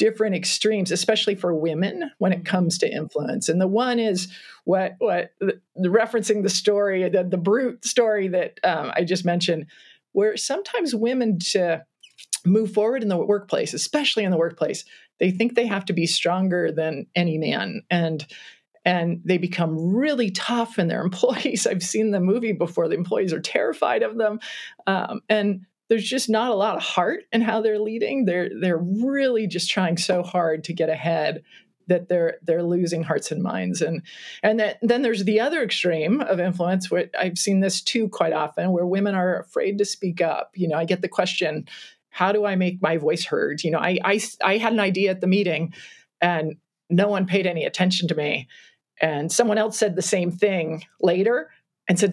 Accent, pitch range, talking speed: American, 175-220 Hz, 195 wpm